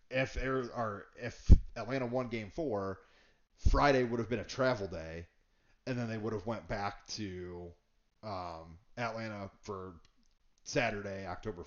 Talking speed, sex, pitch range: 145 wpm, male, 95-115 Hz